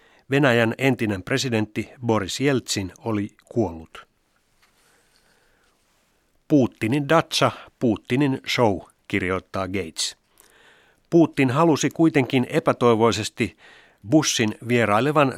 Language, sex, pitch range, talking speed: Finnish, male, 105-135 Hz, 75 wpm